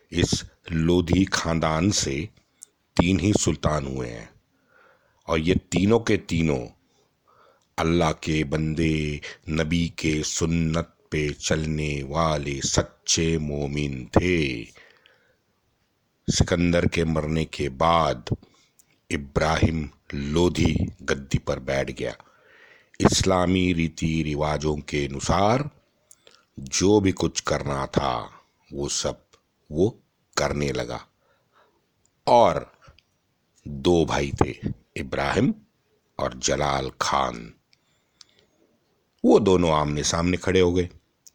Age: 50-69